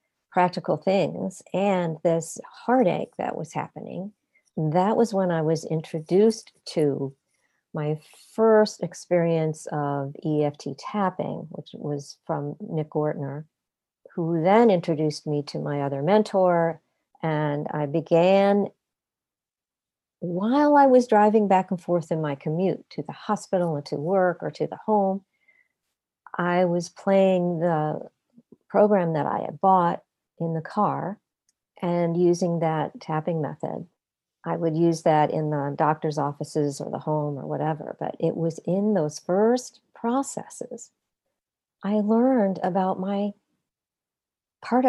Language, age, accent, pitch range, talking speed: English, 50-69, American, 155-200 Hz, 130 wpm